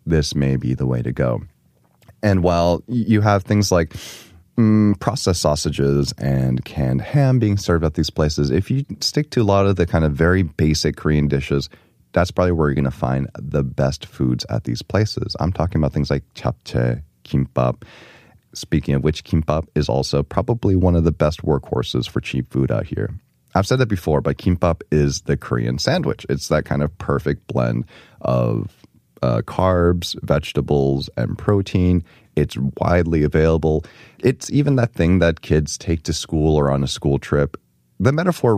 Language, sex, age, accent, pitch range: Korean, male, 30-49, American, 70-95 Hz